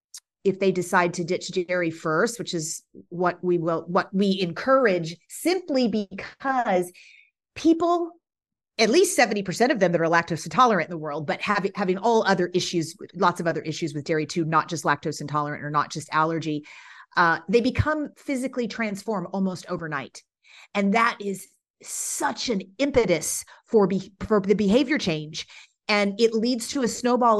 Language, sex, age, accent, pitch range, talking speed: English, female, 40-59, American, 170-225 Hz, 165 wpm